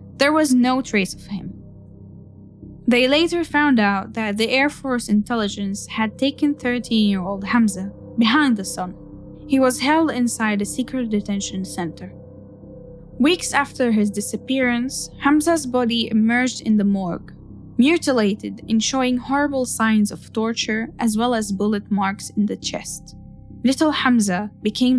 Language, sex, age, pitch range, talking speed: English, female, 10-29, 205-260 Hz, 140 wpm